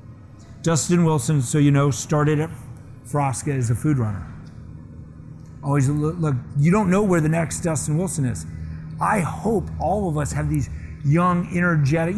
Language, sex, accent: English, male, American